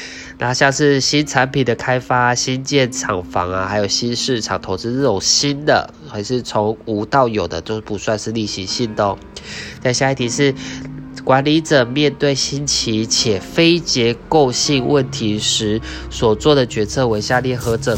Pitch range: 105-135 Hz